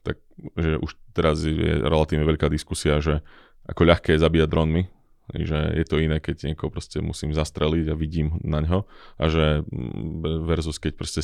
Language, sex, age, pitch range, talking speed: Slovak, male, 20-39, 75-85 Hz, 165 wpm